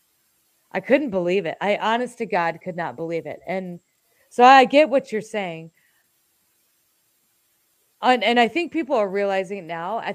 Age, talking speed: 30-49, 170 wpm